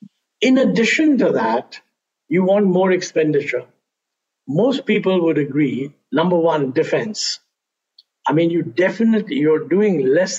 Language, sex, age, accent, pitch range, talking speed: Hindi, male, 50-69, native, 145-205 Hz, 125 wpm